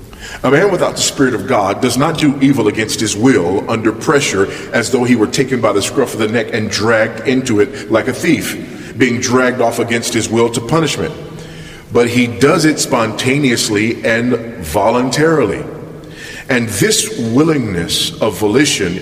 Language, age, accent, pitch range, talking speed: English, 40-59, American, 95-130 Hz, 170 wpm